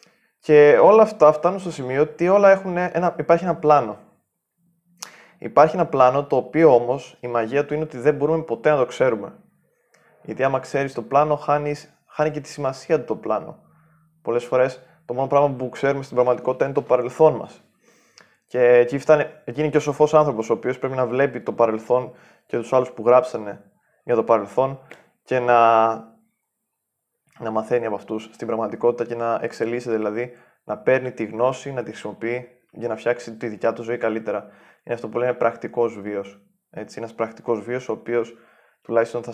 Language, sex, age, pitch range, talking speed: Greek, male, 20-39, 115-145 Hz, 180 wpm